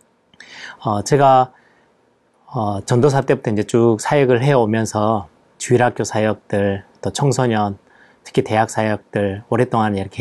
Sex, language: male, Korean